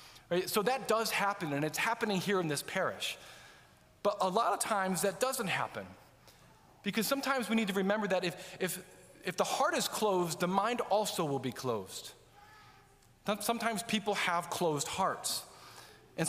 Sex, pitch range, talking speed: male, 170-220 Hz, 165 wpm